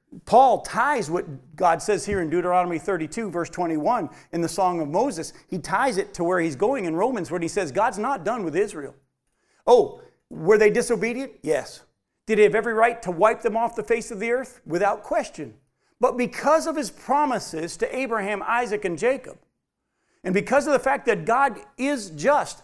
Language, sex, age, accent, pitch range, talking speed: English, male, 40-59, American, 195-275 Hz, 195 wpm